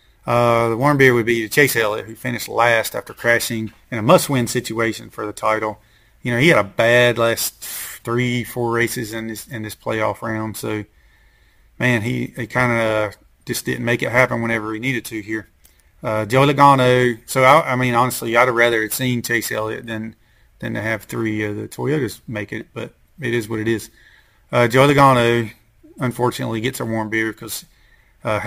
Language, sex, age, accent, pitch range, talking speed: English, male, 30-49, American, 110-125 Hz, 195 wpm